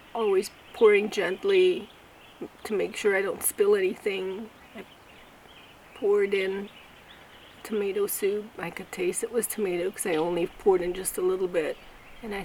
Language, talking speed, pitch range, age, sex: English, 155 wpm, 205-255 Hz, 30-49, female